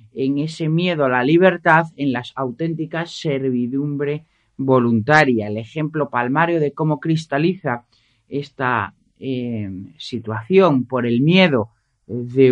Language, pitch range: Spanish, 125-160 Hz